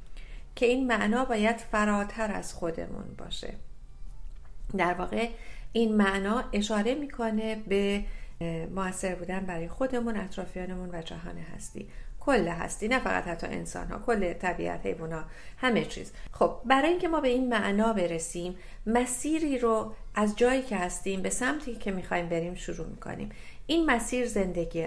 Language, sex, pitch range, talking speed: Persian, female, 190-230 Hz, 145 wpm